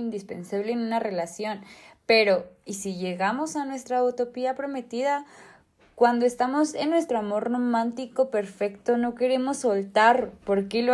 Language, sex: Spanish, female